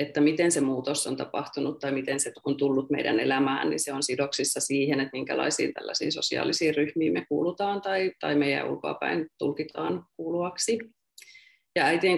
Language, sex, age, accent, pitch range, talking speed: Finnish, female, 30-49, native, 140-180 Hz, 165 wpm